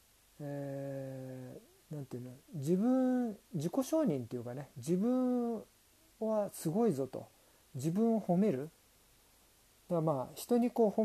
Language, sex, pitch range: Japanese, male, 130-215 Hz